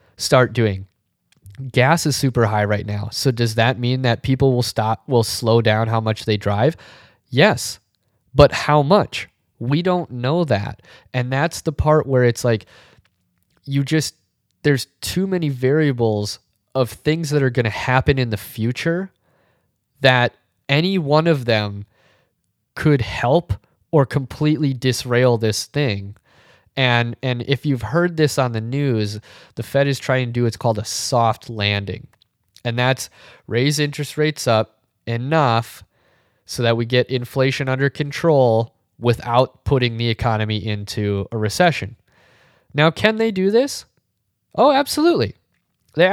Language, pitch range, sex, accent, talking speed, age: English, 110-140 Hz, male, American, 150 wpm, 20-39